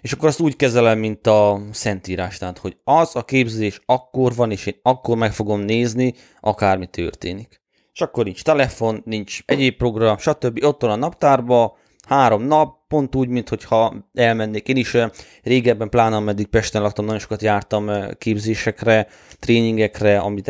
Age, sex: 20-39, male